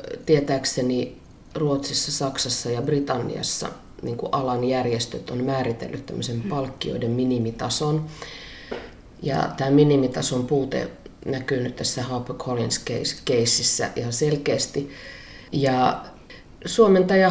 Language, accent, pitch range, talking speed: Finnish, native, 130-160 Hz, 95 wpm